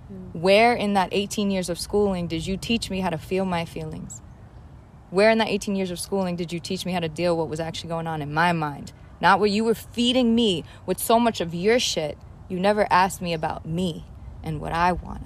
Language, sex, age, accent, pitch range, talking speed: English, female, 20-39, American, 150-180 Hz, 235 wpm